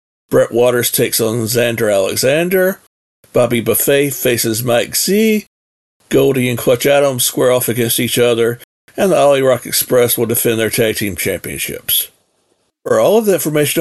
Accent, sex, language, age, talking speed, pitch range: American, male, English, 50-69, 155 wpm, 120-145 Hz